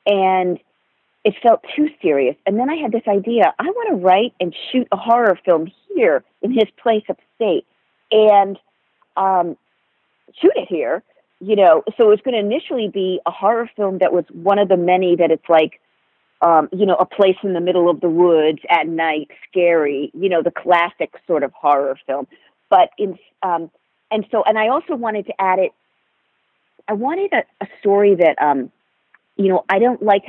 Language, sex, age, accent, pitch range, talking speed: English, female, 40-59, American, 165-215 Hz, 195 wpm